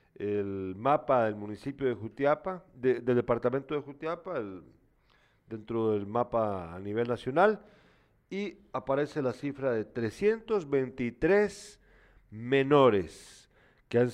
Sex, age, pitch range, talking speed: male, 40-59, 120-150 Hz, 115 wpm